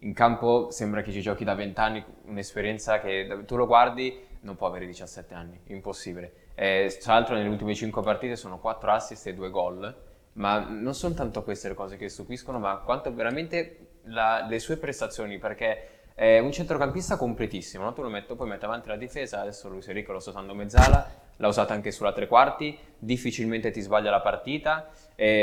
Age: 20-39